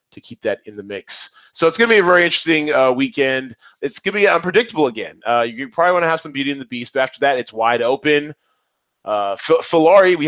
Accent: American